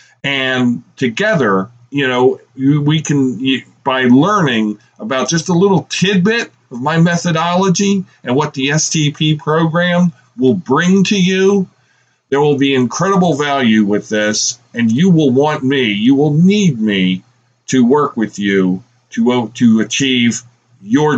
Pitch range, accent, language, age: 125-155 Hz, American, English, 50-69